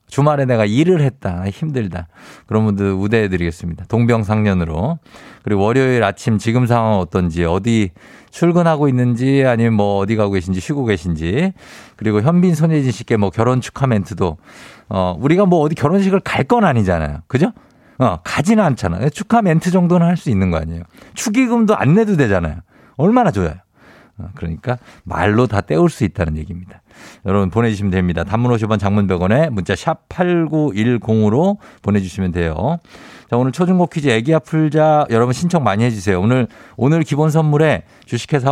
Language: Korean